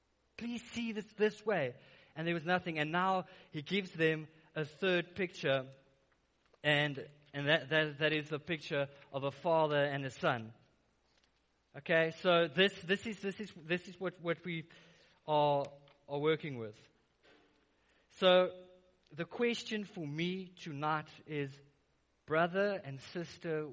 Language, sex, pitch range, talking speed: English, male, 145-180 Hz, 145 wpm